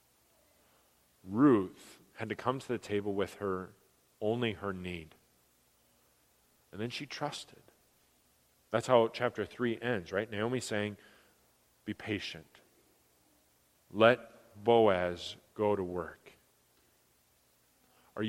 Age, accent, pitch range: 40-59, American, 90-120 Hz